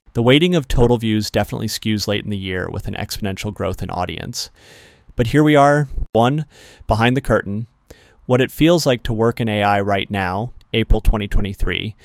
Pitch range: 100-120 Hz